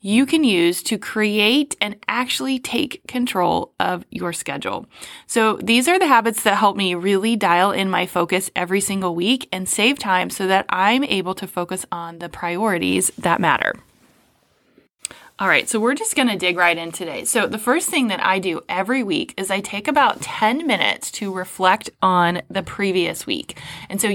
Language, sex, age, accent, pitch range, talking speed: English, female, 20-39, American, 185-245 Hz, 190 wpm